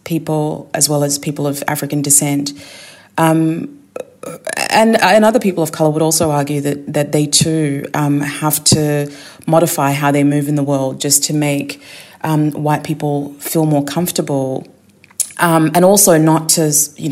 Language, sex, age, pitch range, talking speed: English, female, 30-49, 145-165 Hz, 165 wpm